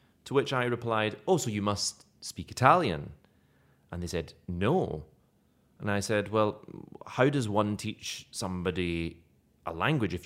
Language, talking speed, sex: English, 150 wpm, male